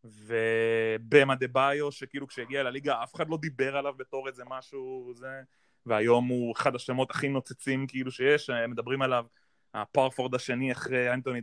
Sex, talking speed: male, 150 wpm